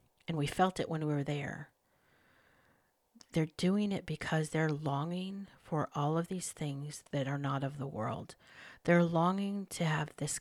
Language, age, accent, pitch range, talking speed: English, 50-69, American, 155-180 Hz, 175 wpm